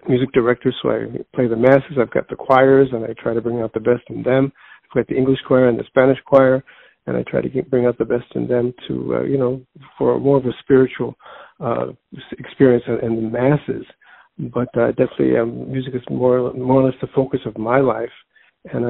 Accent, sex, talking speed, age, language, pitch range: American, male, 230 wpm, 50-69, English, 120-135 Hz